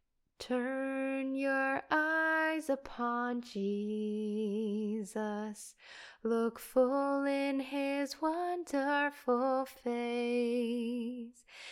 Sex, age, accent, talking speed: female, 10-29, American, 55 wpm